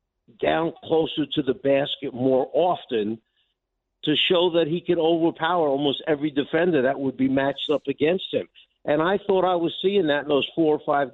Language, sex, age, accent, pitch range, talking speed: English, male, 50-69, American, 140-175 Hz, 190 wpm